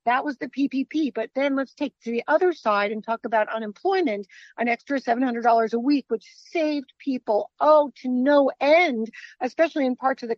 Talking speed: 200 wpm